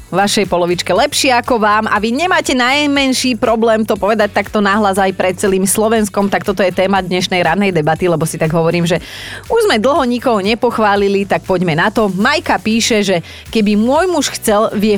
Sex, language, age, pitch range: female, Slovak, 30-49, 175-230 Hz